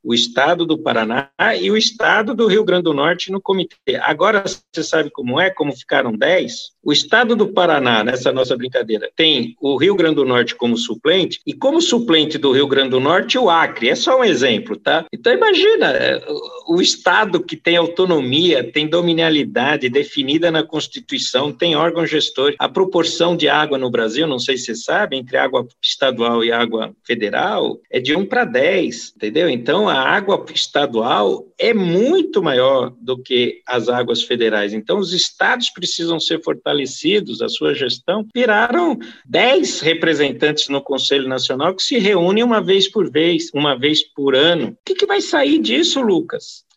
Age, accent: 50-69, Brazilian